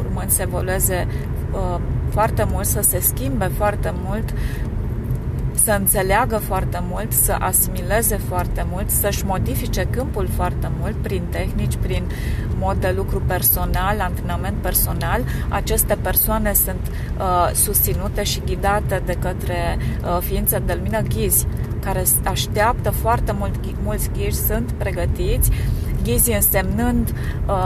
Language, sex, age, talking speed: Romanian, female, 30-49, 120 wpm